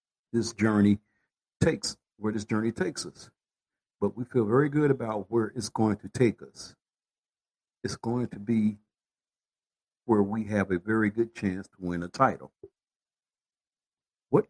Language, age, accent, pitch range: English, 60-79, American, 95-120 Hz